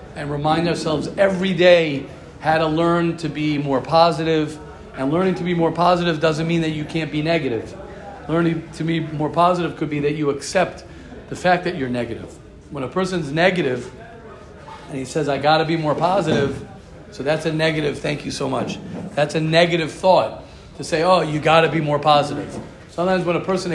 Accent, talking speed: American, 190 wpm